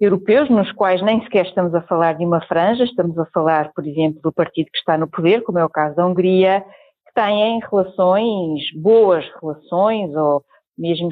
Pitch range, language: 170-220 Hz, Portuguese